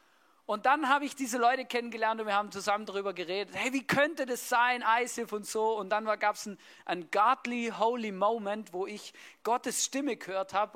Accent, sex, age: German, male, 40-59